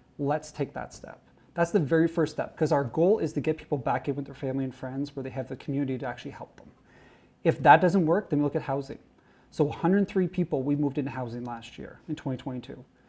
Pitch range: 135-165 Hz